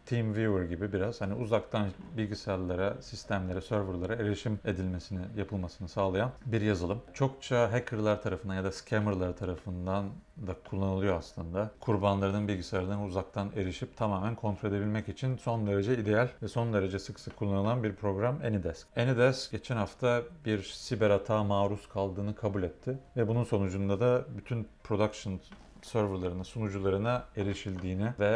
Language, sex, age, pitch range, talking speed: Turkish, male, 40-59, 95-115 Hz, 135 wpm